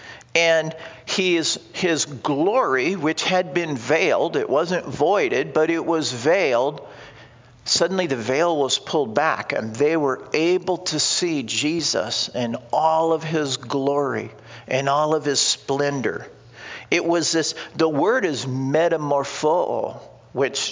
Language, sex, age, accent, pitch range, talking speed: English, male, 50-69, American, 145-205 Hz, 135 wpm